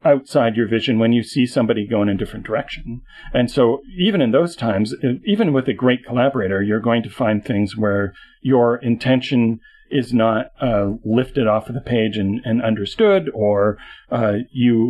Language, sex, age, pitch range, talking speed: English, male, 40-59, 110-130 Hz, 175 wpm